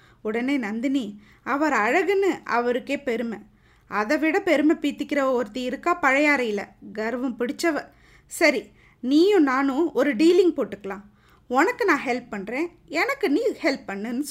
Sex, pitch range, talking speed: female, 235-335 Hz, 125 wpm